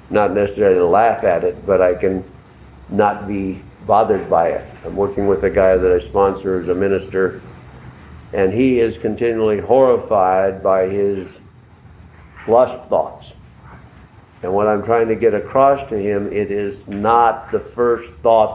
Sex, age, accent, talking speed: male, 50-69, American, 160 wpm